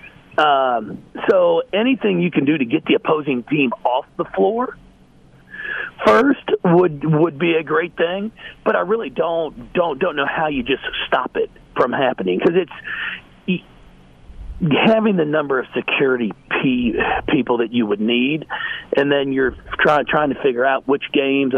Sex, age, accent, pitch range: male, 50-69, American, 140-230 Hz